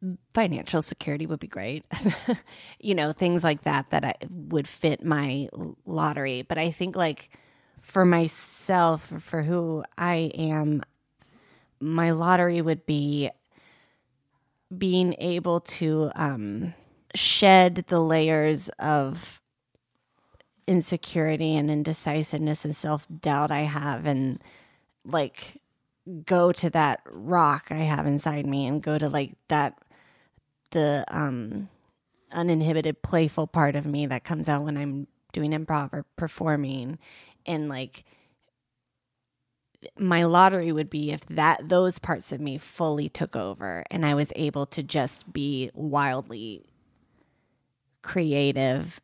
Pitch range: 140-165 Hz